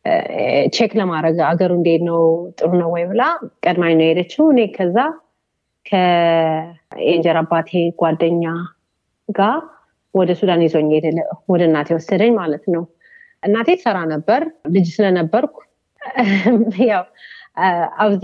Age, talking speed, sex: 30-49, 100 wpm, female